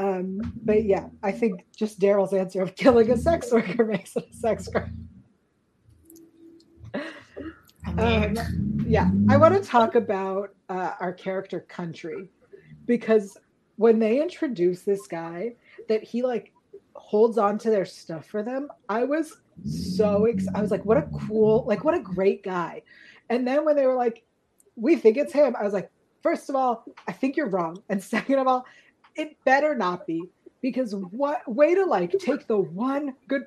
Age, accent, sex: 30-49, American, female